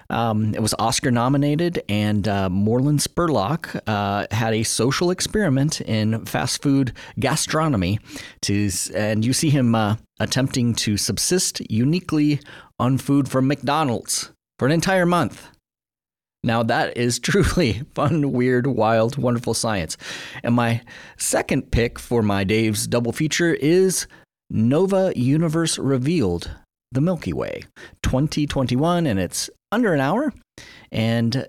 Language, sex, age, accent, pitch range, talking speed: English, male, 40-59, American, 105-150 Hz, 130 wpm